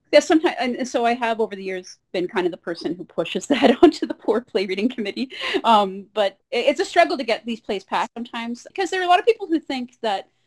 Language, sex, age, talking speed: English, female, 30-49, 245 wpm